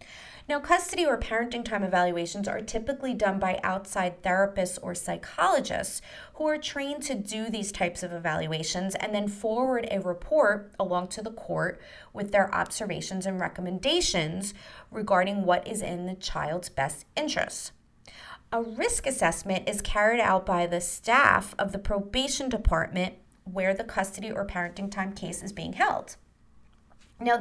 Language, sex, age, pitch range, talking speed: English, female, 30-49, 180-225 Hz, 150 wpm